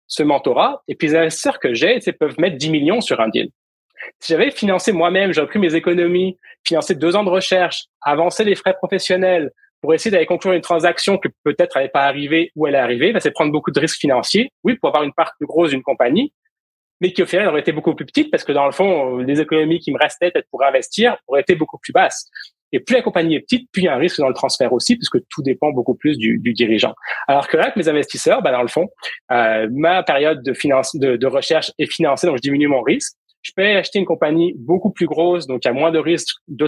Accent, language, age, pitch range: French, French, 30-49, 145-185 Hz